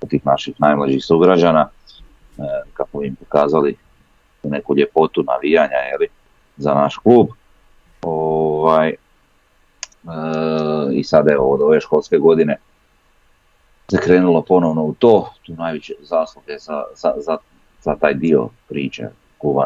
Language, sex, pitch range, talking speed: Croatian, male, 70-115 Hz, 125 wpm